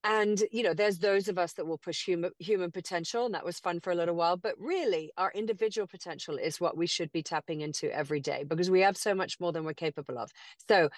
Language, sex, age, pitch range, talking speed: English, female, 40-59, 165-205 Hz, 250 wpm